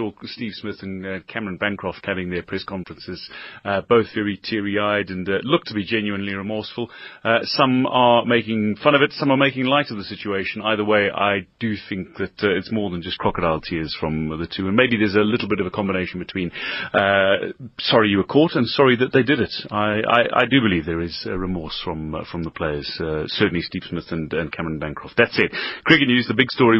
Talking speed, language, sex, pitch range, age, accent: 225 wpm, English, male, 95-115 Hz, 30-49, British